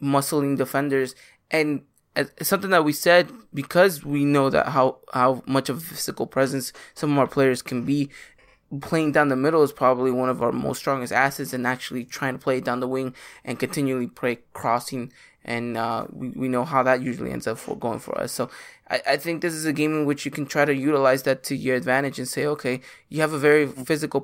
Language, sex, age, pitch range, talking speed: English, male, 20-39, 130-145 Hz, 225 wpm